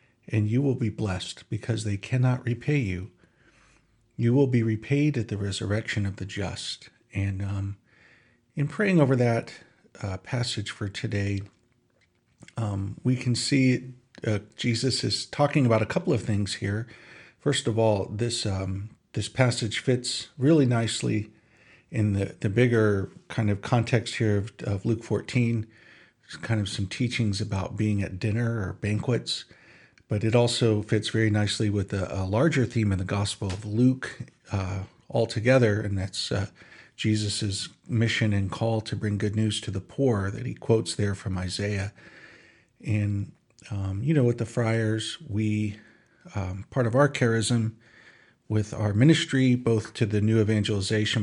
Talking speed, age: 160 wpm, 50-69